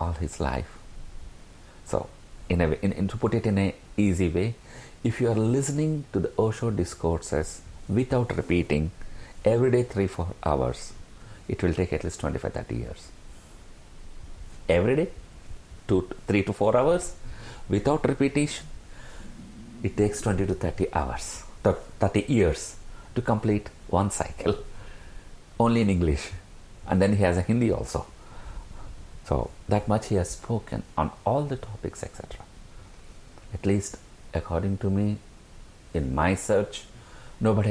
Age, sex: 50-69, male